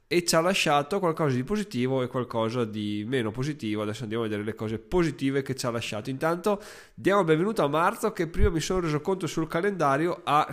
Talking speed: 215 wpm